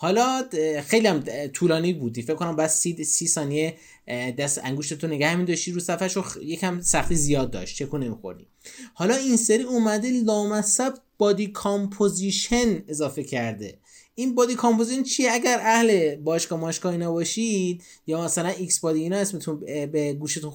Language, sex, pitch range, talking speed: Persian, male, 160-215 Hz, 150 wpm